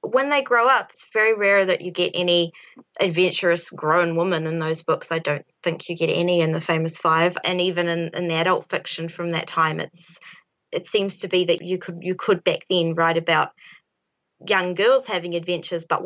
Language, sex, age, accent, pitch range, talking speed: English, female, 20-39, Australian, 165-185 Hz, 210 wpm